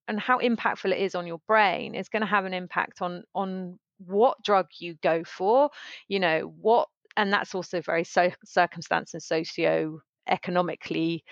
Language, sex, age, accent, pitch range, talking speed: English, female, 30-49, British, 180-230 Hz, 170 wpm